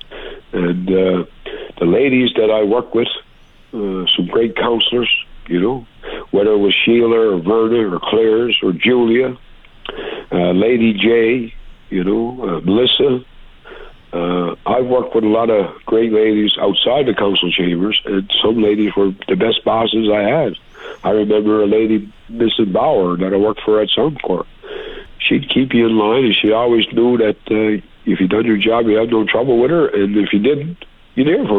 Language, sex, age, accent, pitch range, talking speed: English, male, 60-79, American, 100-115 Hz, 180 wpm